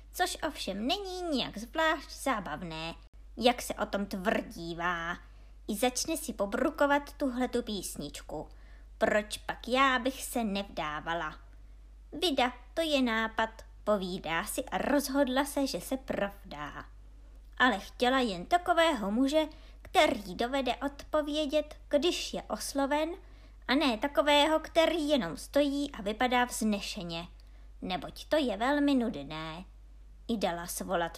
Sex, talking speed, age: male, 120 wpm, 20-39